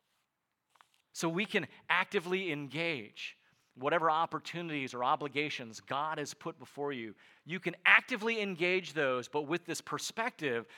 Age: 40-59